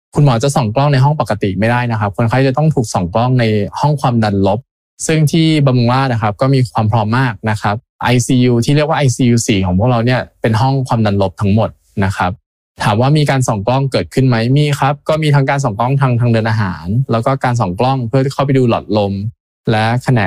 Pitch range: 110-135 Hz